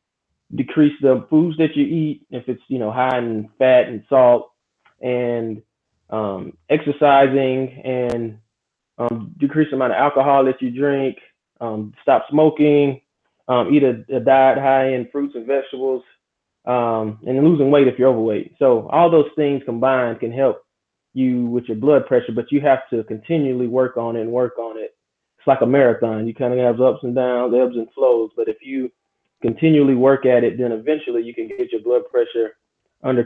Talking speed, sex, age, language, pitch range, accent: 185 wpm, male, 20-39, English, 120-140 Hz, American